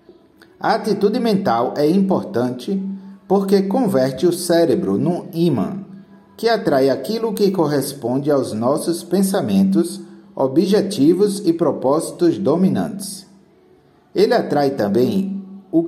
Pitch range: 150-200 Hz